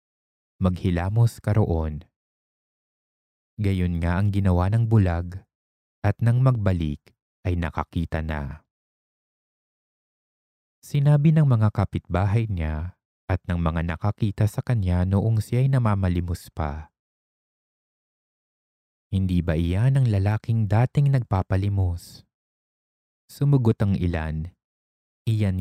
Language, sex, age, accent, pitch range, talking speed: English, male, 20-39, Filipino, 80-110 Hz, 95 wpm